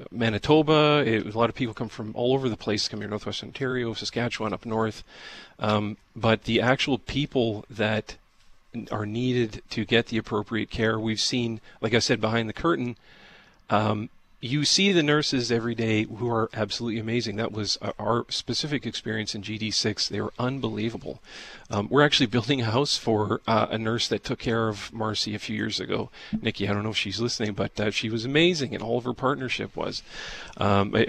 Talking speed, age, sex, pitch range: 190 wpm, 40-59, male, 105-125 Hz